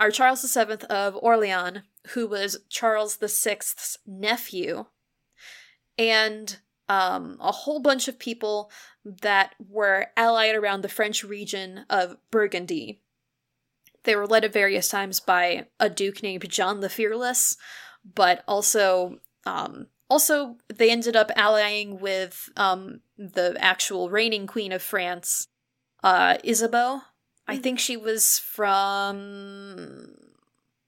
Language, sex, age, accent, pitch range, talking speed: English, female, 20-39, American, 200-235 Hz, 120 wpm